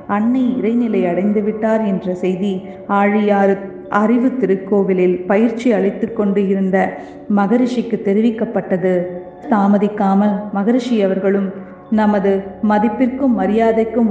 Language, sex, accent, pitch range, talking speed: Tamil, female, native, 195-225 Hz, 65 wpm